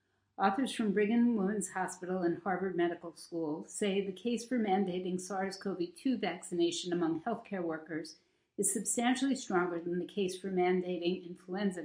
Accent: American